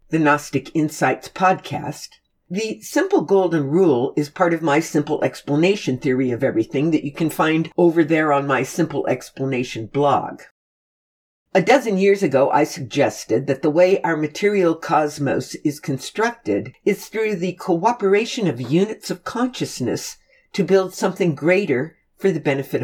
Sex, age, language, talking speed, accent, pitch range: female, 60-79, English, 150 wpm, American, 145-195 Hz